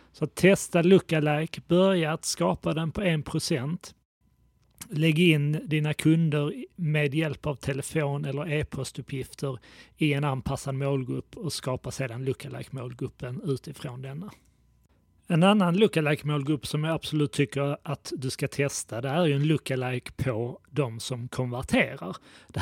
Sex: male